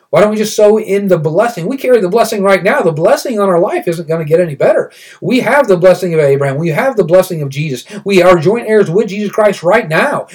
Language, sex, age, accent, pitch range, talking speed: English, male, 40-59, American, 165-210 Hz, 265 wpm